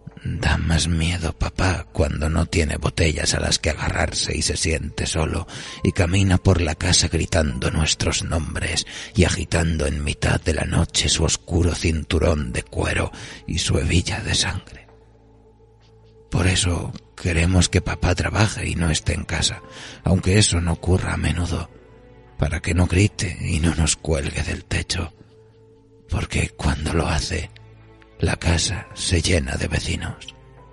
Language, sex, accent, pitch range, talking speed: Spanish, male, Spanish, 80-95 Hz, 150 wpm